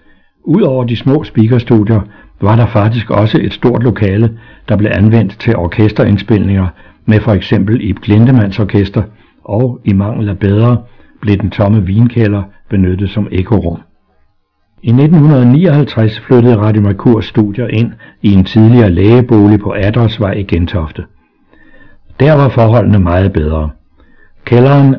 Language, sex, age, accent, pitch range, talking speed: Danish, male, 60-79, native, 100-120 Hz, 130 wpm